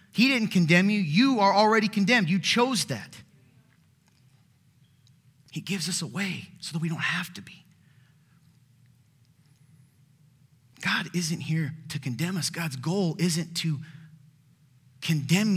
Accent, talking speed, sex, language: American, 130 wpm, male, English